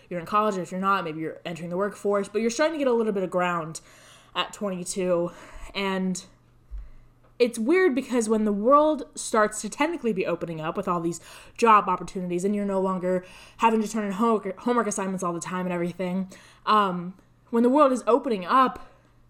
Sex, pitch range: female, 180-240 Hz